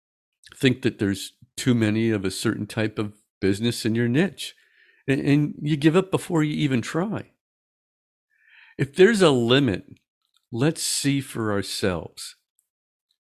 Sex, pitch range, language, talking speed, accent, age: male, 105-150 Hz, English, 140 wpm, American, 50-69